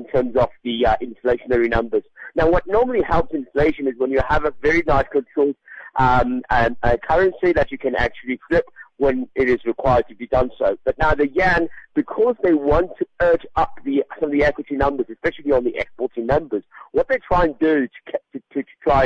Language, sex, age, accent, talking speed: English, male, 50-69, British, 200 wpm